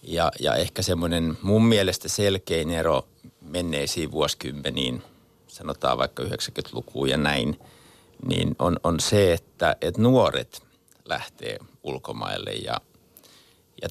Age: 60-79